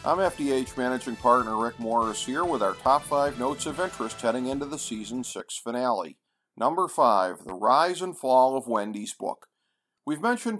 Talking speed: 175 wpm